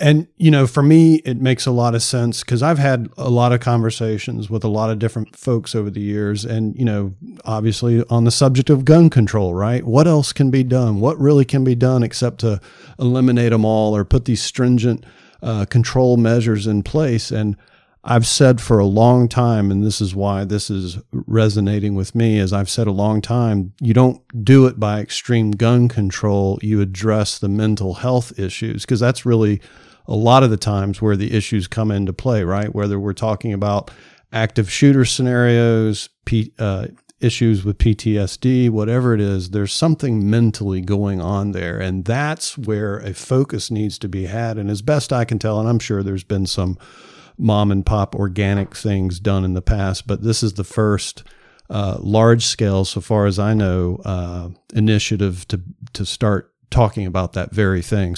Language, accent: English, American